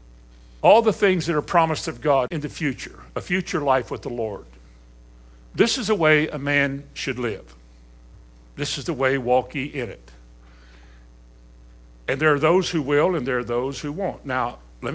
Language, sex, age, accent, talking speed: English, male, 60-79, American, 190 wpm